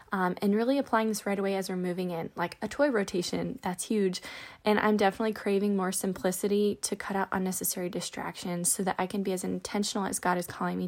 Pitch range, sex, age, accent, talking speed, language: 185-220 Hz, female, 20-39, American, 220 wpm, English